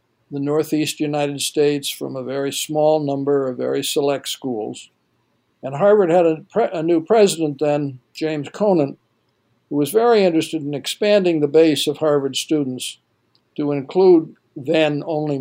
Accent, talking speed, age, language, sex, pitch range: American, 150 wpm, 60-79, English, male, 140-170 Hz